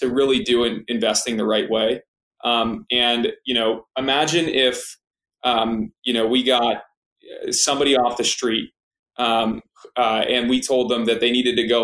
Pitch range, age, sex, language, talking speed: 120-140 Hz, 20-39, male, English, 175 wpm